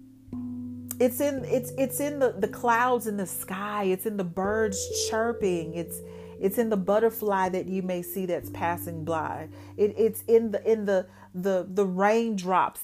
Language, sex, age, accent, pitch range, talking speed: English, female, 40-59, American, 170-210 Hz, 175 wpm